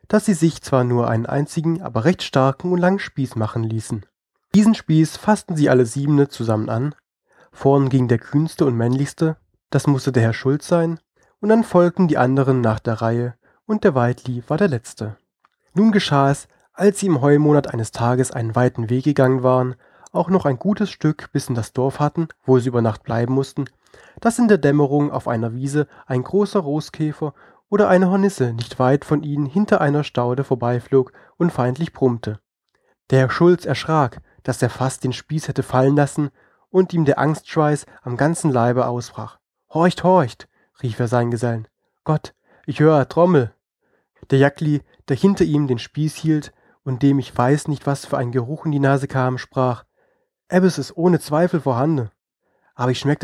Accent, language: German, German